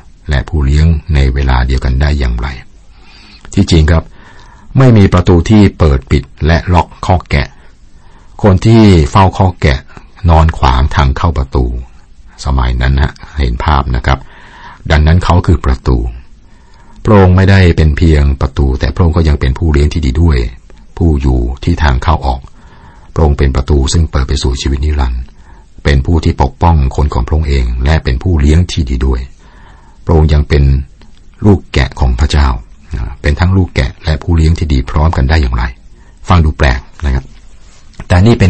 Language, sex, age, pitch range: Thai, male, 60-79, 65-85 Hz